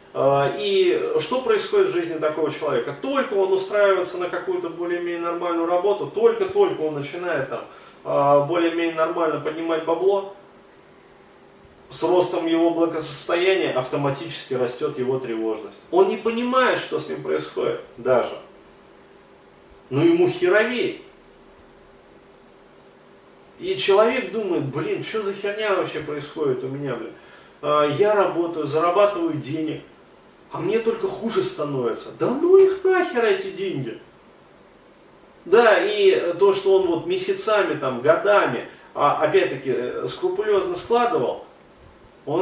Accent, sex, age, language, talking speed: native, male, 30-49, Russian, 115 wpm